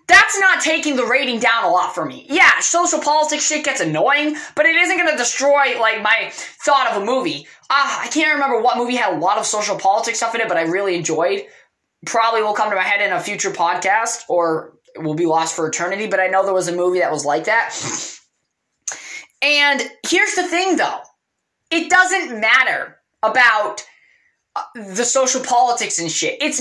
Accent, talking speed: American, 200 wpm